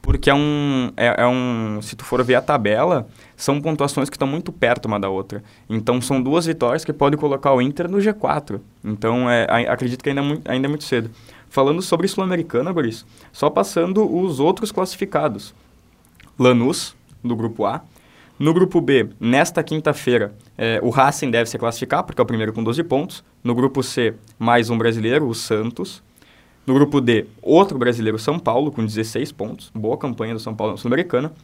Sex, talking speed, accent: male, 180 wpm, Brazilian